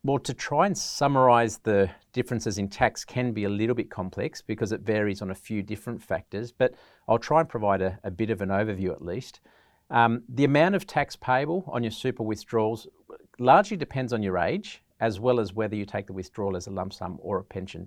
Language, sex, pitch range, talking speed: English, male, 100-125 Hz, 220 wpm